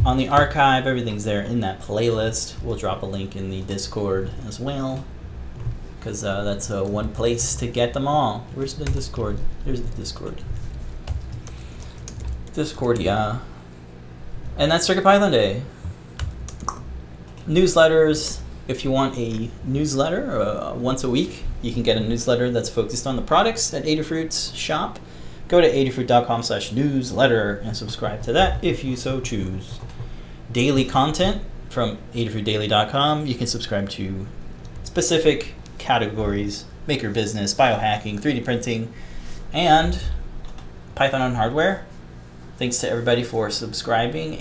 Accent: American